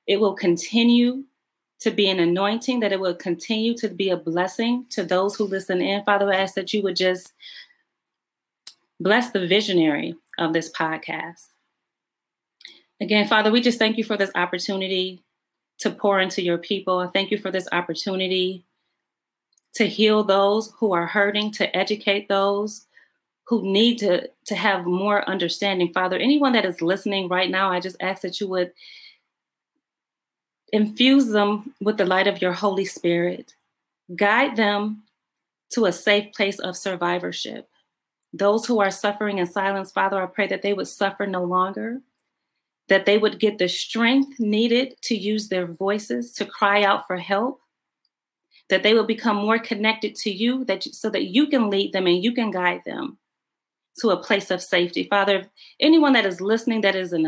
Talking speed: 170 wpm